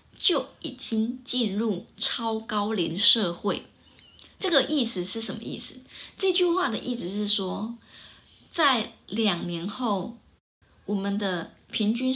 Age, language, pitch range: 20-39, Chinese, 195-250 Hz